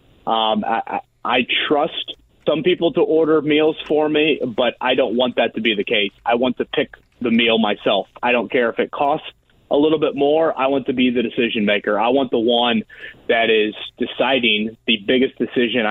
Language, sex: English, male